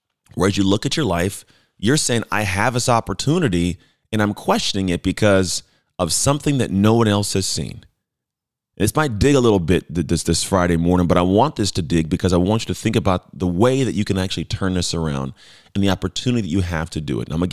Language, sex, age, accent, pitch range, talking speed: English, male, 30-49, American, 90-110 Hz, 240 wpm